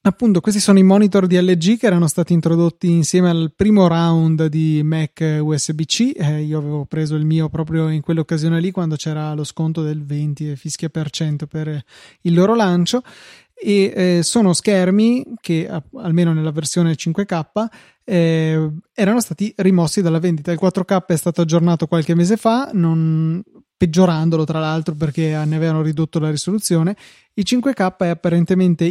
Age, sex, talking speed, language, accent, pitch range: 20-39, male, 165 wpm, Italian, native, 160-190 Hz